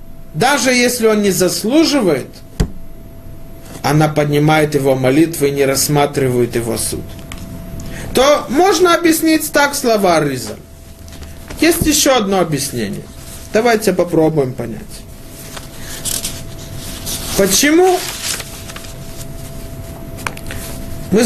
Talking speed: 80 wpm